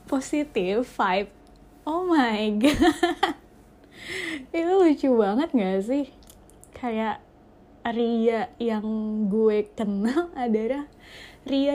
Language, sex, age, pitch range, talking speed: Indonesian, female, 20-39, 215-270 Hz, 85 wpm